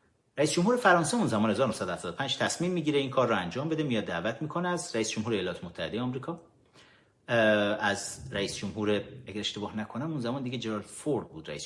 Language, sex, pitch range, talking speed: Persian, male, 100-140 Hz, 180 wpm